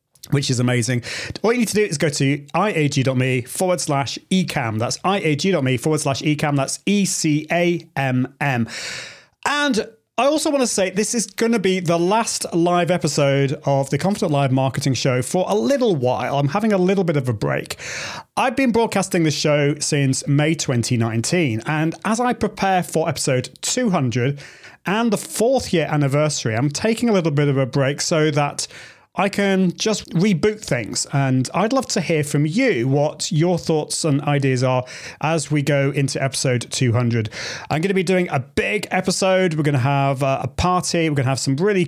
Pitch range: 135-185 Hz